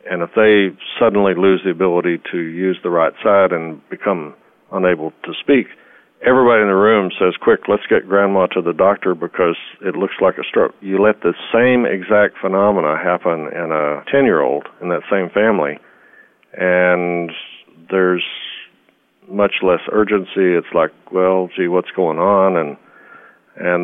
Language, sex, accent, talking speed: English, male, American, 165 wpm